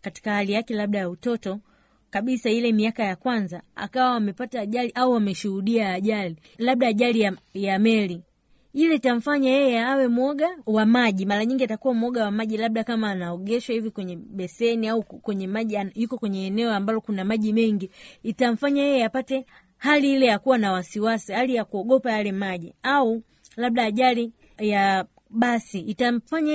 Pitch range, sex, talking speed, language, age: 205-260 Hz, female, 165 wpm, Swahili, 30-49